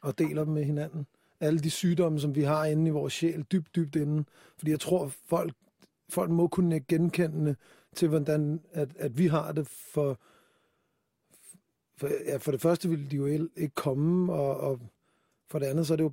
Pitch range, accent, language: 145-165 Hz, native, Danish